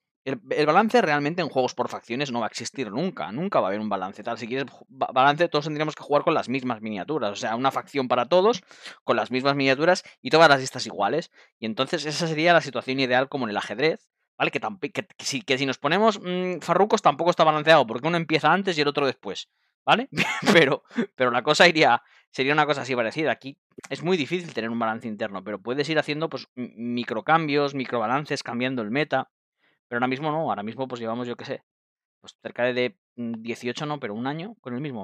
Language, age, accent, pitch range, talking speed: Spanish, 20-39, Spanish, 115-155 Hz, 225 wpm